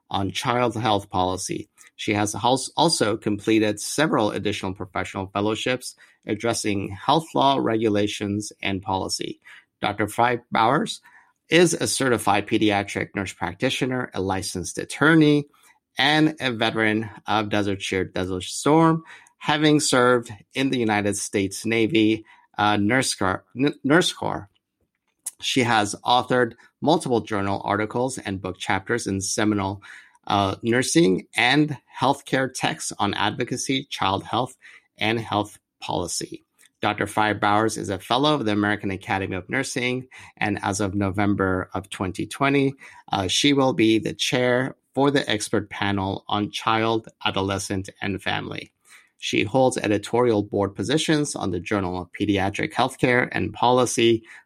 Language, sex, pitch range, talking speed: English, male, 100-125 Hz, 130 wpm